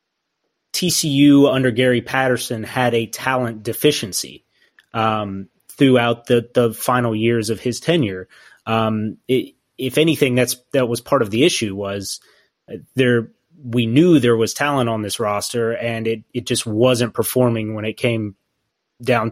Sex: male